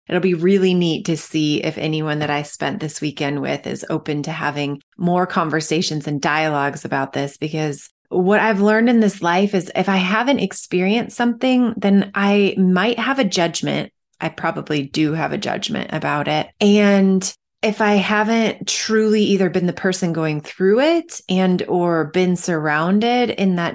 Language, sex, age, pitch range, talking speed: English, female, 20-39, 160-215 Hz, 175 wpm